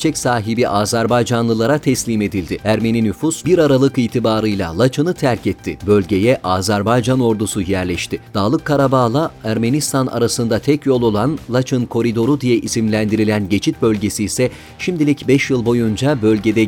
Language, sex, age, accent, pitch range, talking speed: Turkish, male, 40-59, native, 110-140 Hz, 130 wpm